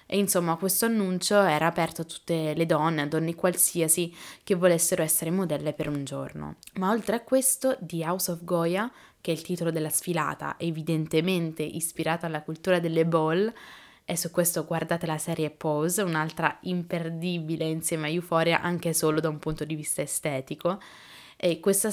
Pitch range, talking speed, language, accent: 160-185 Hz, 170 wpm, Italian, native